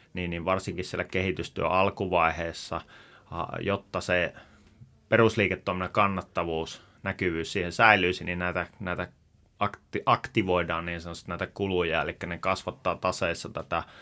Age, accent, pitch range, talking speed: 30-49, native, 85-100 Hz, 110 wpm